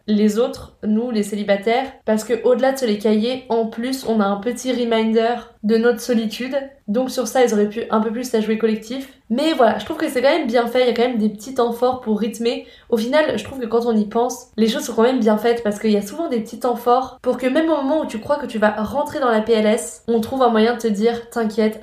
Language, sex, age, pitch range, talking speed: French, female, 20-39, 215-245 Hz, 285 wpm